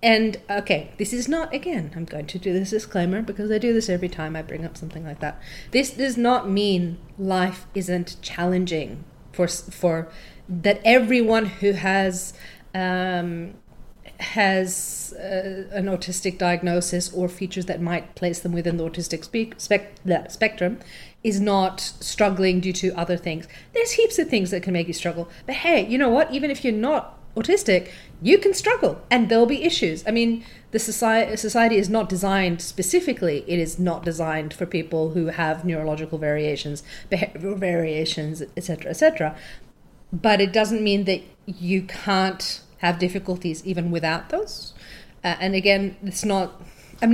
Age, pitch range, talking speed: 30-49, 170-215 Hz, 165 wpm